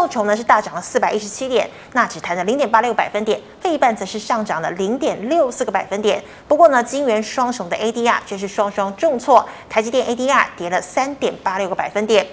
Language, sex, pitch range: Chinese, female, 200-270 Hz